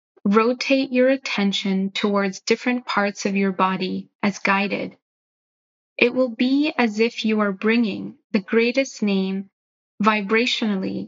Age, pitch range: 20-39, 200-245 Hz